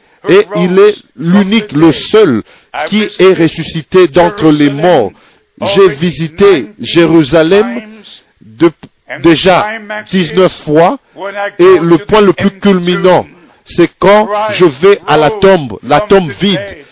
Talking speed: 120 wpm